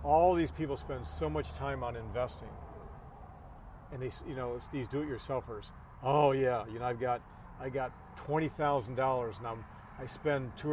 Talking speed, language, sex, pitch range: 180 wpm, English, male, 120-145 Hz